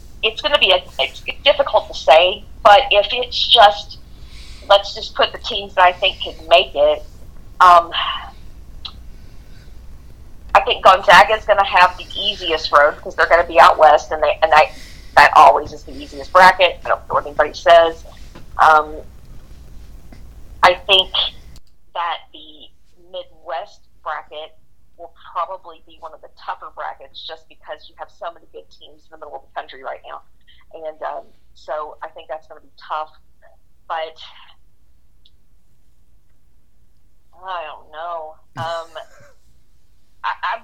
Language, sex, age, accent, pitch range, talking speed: English, female, 40-59, American, 125-195 Hz, 150 wpm